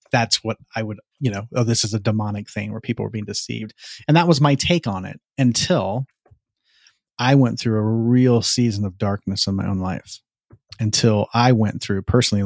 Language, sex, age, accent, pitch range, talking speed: English, male, 30-49, American, 105-125 Hz, 200 wpm